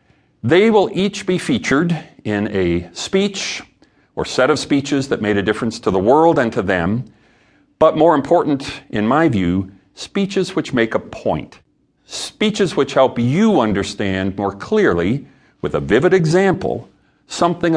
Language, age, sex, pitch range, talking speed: English, 40-59, male, 100-150 Hz, 150 wpm